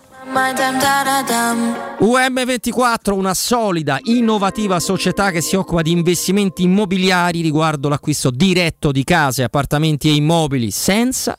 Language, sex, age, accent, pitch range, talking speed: Italian, male, 30-49, native, 125-175 Hz, 105 wpm